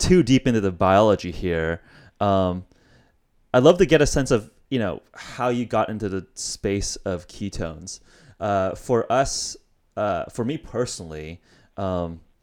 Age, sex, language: 30-49, male, English